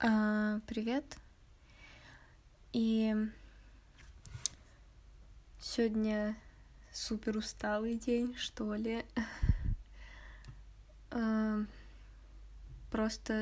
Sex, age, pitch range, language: female, 20-39, 210-235 Hz, Russian